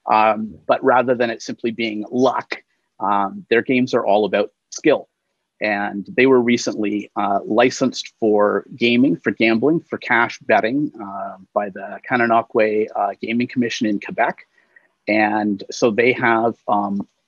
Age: 30-49